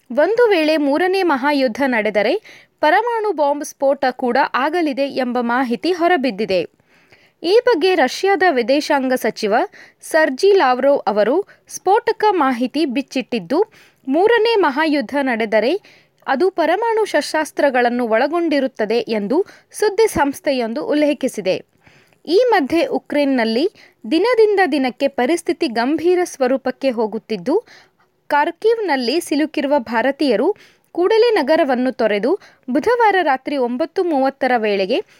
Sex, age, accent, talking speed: female, 20-39, native, 90 wpm